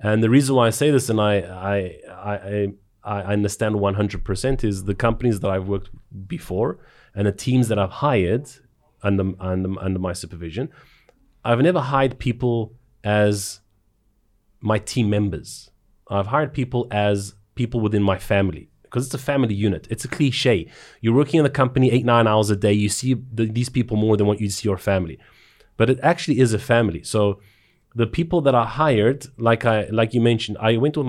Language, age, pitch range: Greek, 30-49, 100-120 Hz